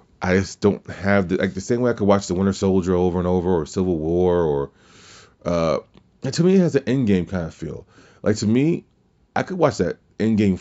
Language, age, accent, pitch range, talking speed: English, 30-49, American, 85-105 Hz, 240 wpm